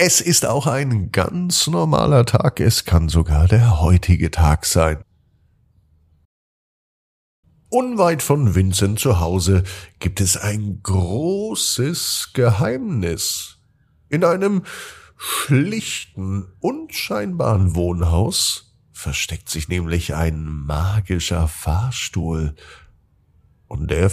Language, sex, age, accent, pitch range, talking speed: German, male, 50-69, German, 85-125 Hz, 90 wpm